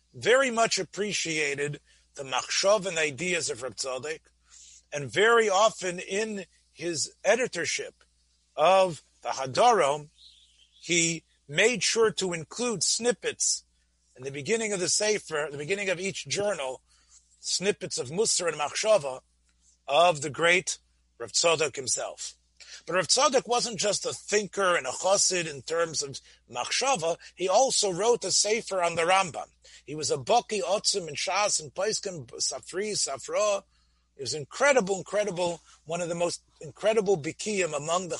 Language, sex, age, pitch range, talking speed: English, male, 40-59, 130-205 Hz, 140 wpm